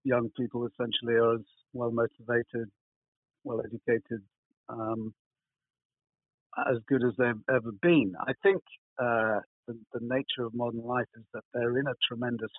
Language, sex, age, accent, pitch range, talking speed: English, male, 50-69, British, 115-135 Hz, 135 wpm